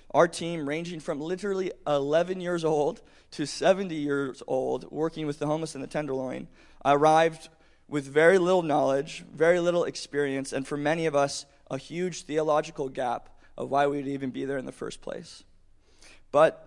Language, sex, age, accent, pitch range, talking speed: English, male, 20-39, American, 135-160 Hz, 175 wpm